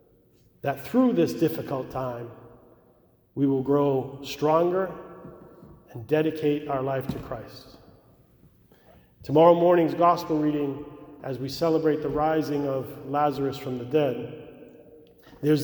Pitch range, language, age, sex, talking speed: 140-175 Hz, English, 40-59, male, 115 wpm